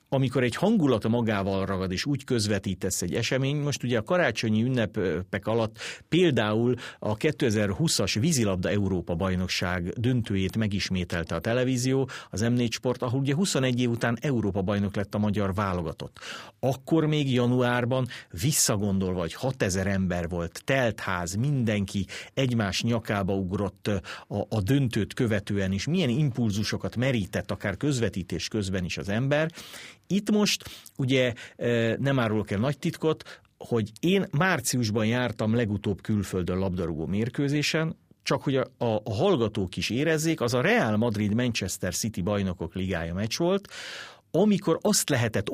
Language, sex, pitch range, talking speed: Hungarian, male, 100-135 Hz, 130 wpm